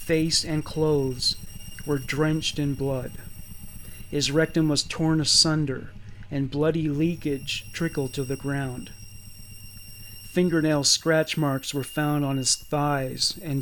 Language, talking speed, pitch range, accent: English, 125 wpm, 120-155 Hz, American